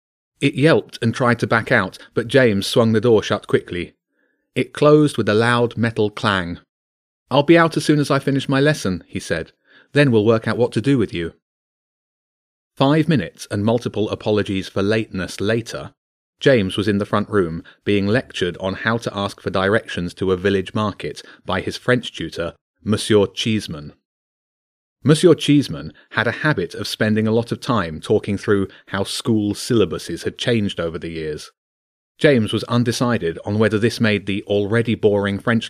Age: 30-49